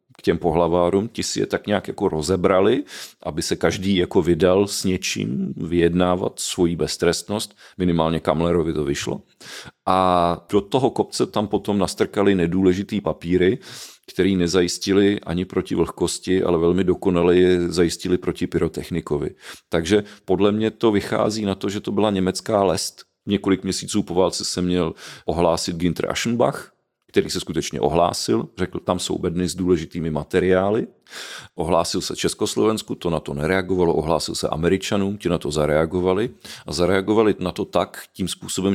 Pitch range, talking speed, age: 85-100 Hz, 150 wpm, 40-59